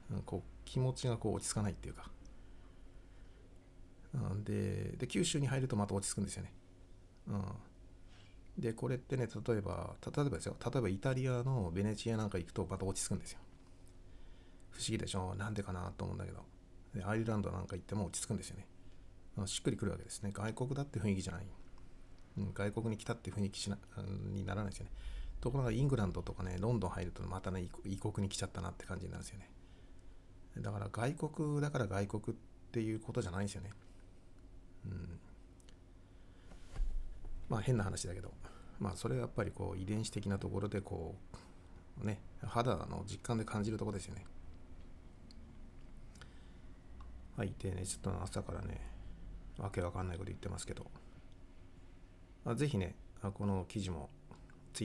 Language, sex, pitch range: Japanese, male, 90-105 Hz